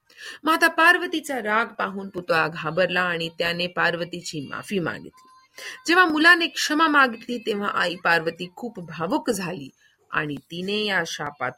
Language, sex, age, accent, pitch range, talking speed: Hindi, female, 40-59, native, 170-285 Hz, 85 wpm